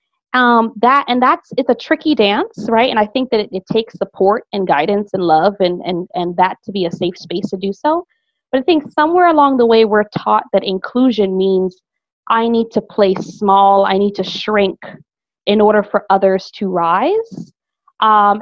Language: English